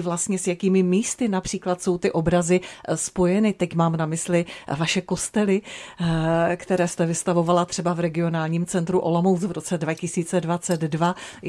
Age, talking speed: 40-59, 135 wpm